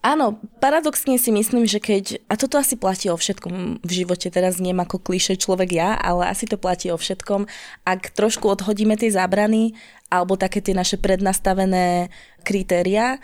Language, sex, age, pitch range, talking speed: Slovak, female, 20-39, 180-215 Hz, 170 wpm